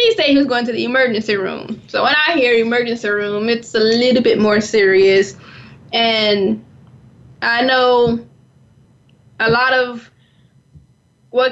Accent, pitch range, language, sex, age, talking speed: American, 210-255 Hz, English, female, 10-29, 145 wpm